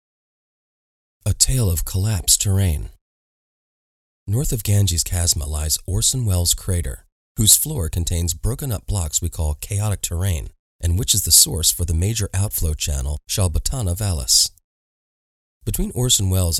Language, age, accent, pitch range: English, 30-49, American, 80-105 Hz